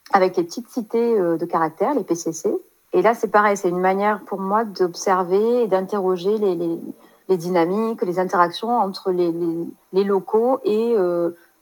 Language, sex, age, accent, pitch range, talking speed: French, female, 40-59, French, 170-205 Hz, 170 wpm